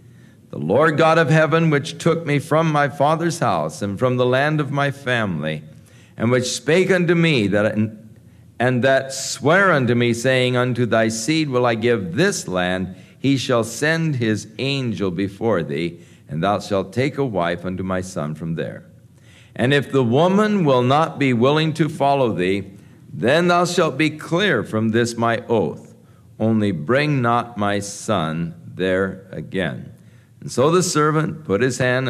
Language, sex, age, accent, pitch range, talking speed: English, male, 60-79, American, 105-145 Hz, 170 wpm